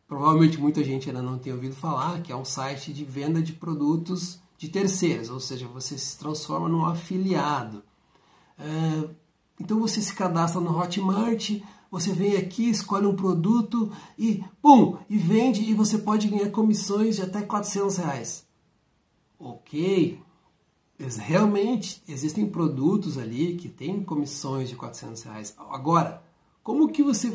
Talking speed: 145 wpm